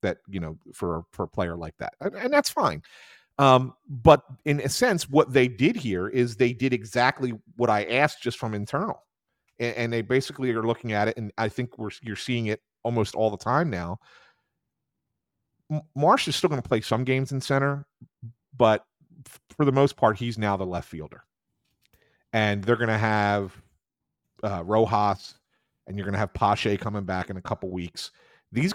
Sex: male